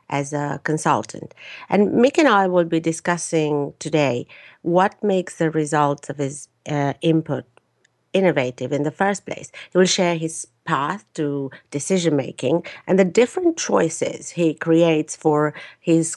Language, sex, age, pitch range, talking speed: English, female, 50-69, 145-180 Hz, 145 wpm